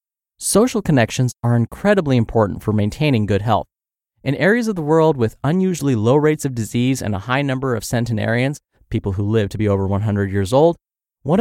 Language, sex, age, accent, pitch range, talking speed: English, male, 30-49, American, 110-155 Hz, 190 wpm